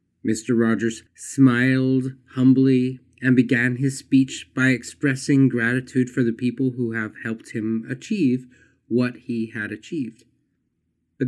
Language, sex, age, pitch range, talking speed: English, male, 30-49, 110-130 Hz, 130 wpm